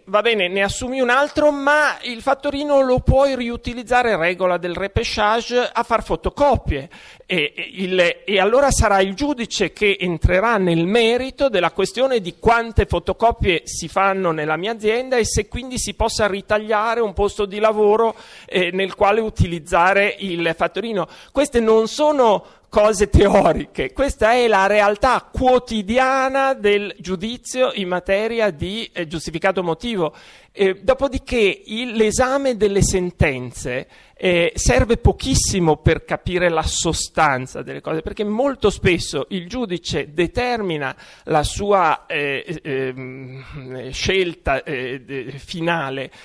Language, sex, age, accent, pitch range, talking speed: Italian, male, 40-59, native, 175-240 Hz, 130 wpm